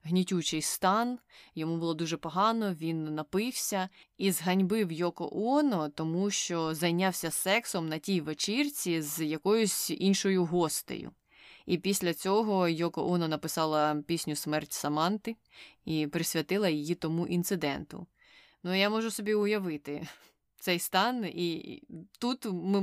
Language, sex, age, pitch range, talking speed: Ukrainian, female, 20-39, 160-195 Hz, 125 wpm